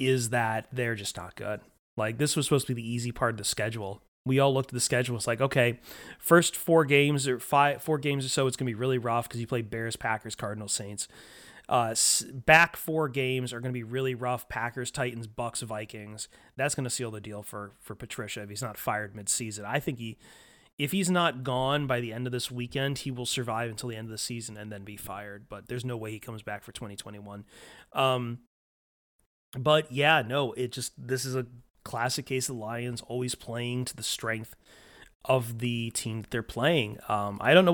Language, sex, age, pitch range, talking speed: English, male, 30-49, 110-130 Hz, 220 wpm